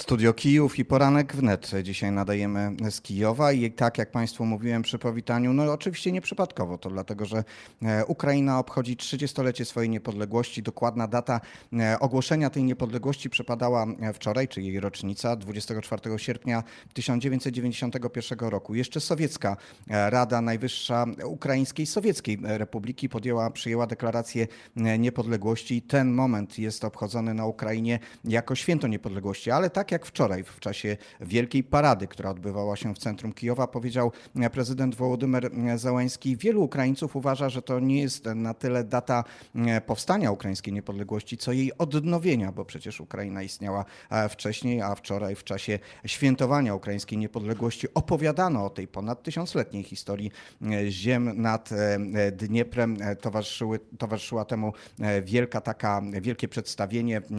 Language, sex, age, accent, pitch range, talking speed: Polish, male, 30-49, native, 105-130 Hz, 130 wpm